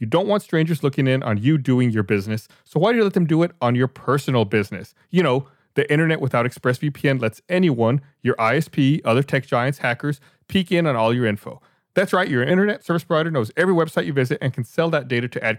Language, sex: English, male